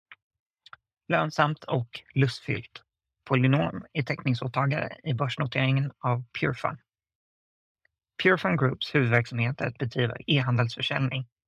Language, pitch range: Swedish, 120-140 Hz